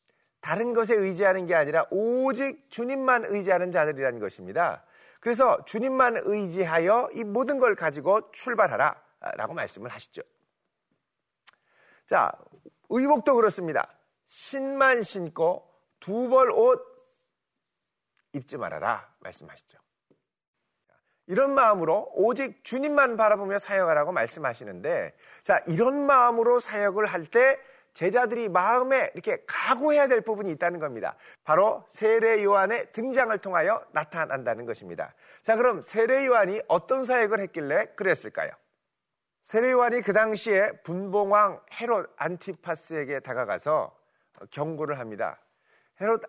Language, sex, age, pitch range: Korean, male, 40-59, 180-260 Hz